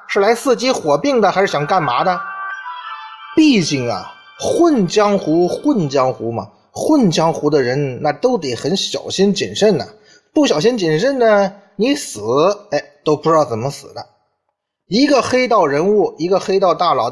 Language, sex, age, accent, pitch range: Chinese, male, 20-39, native, 150-245 Hz